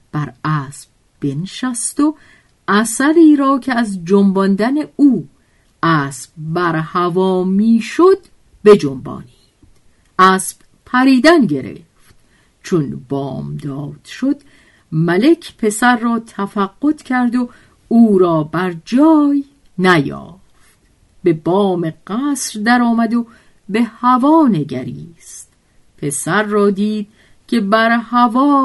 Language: Persian